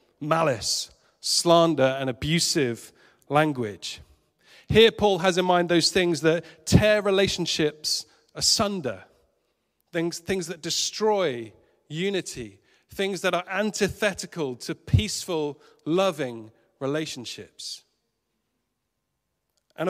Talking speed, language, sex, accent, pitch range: 90 wpm, English, male, British, 125-180 Hz